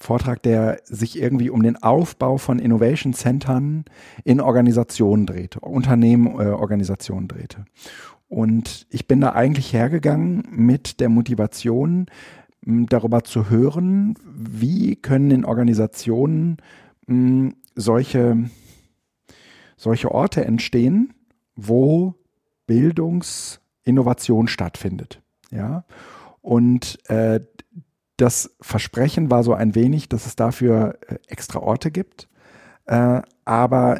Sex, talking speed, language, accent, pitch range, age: male, 90 wpm, German, German, 115-135 Hz, 40-59